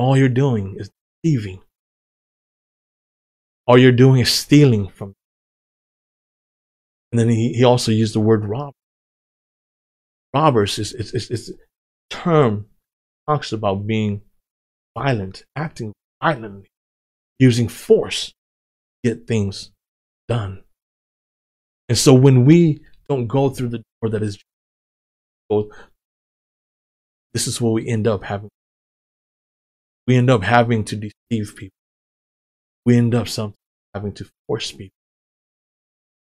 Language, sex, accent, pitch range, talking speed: English, male, American, 100-120 Hz, 125 wpm